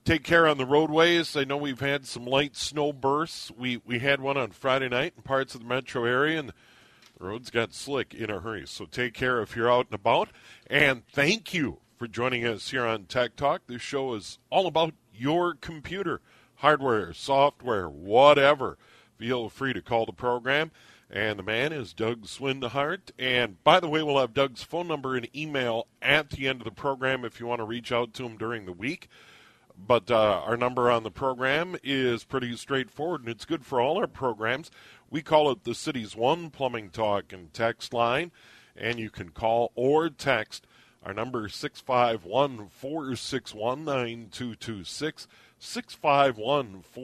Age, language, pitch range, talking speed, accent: 40-59, English, 115-140 Hz, 175 wpm, American